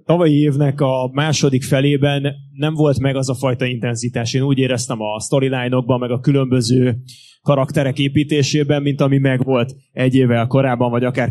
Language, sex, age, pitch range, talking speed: Hungarian, male, 20-39, 135-155 Hz, 160 wpm